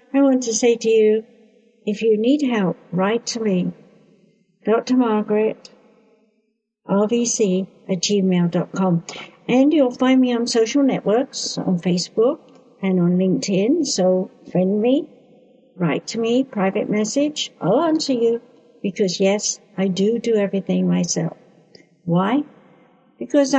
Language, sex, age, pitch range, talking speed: English, female, 60-79, 185-245 Hz, 120 wpm